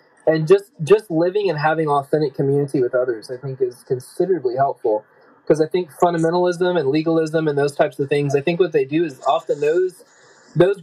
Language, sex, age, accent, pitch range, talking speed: English, male, 20-39, American, 140-180 Hz, 195 wpm